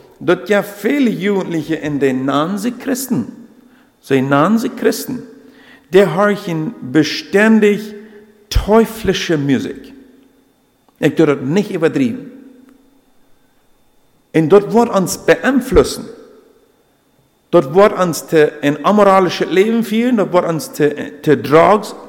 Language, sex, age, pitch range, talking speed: English, male, 50-69, 150-230 Hz, 110 wpm